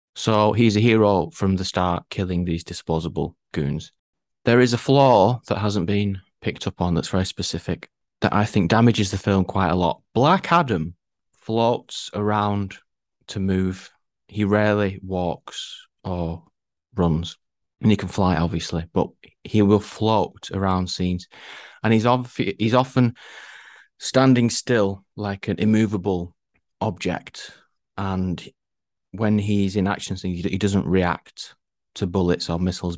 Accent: British